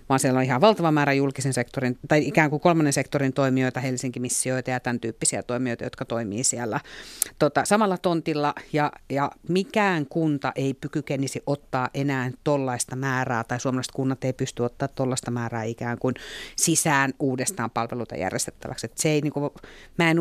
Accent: native